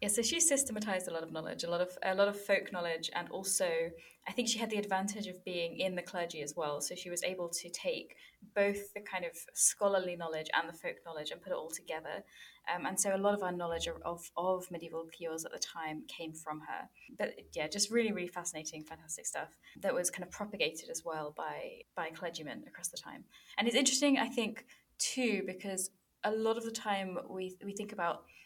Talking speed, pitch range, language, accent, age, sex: 225 wpm, 170-215 Hz, English, British, 20-39, female